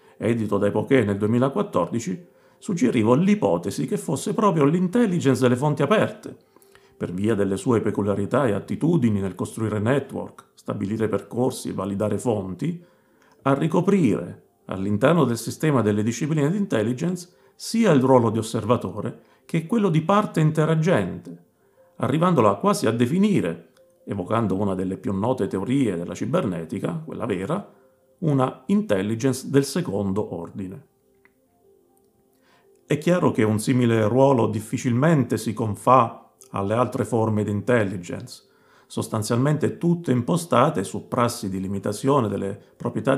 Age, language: 50-69, Italian